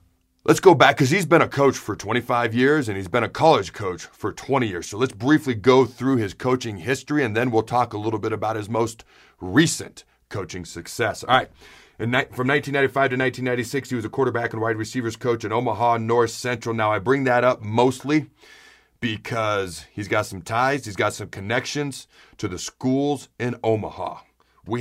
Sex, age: male, 40-59